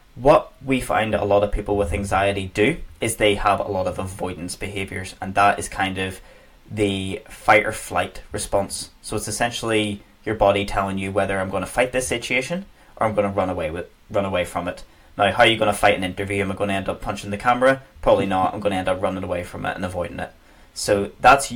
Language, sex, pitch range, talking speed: English, male, 95-105 Hz, 230 wpm